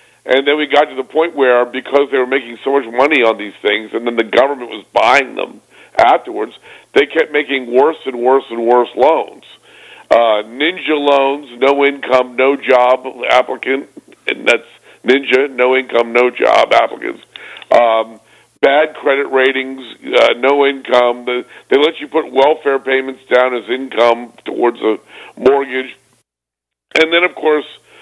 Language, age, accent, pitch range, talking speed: English, 50-69, American, 120-145 Hz, 160 wpm